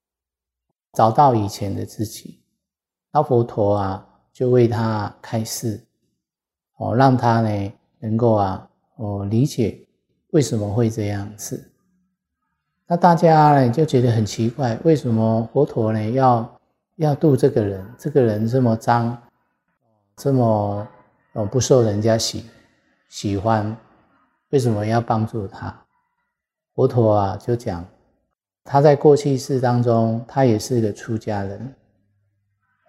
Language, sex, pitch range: Chinese, male, 105-130 Hz